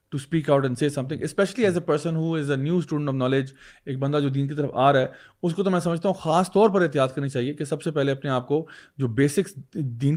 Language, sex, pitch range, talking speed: Urdu, male, 140-180 Hz, 270 wpm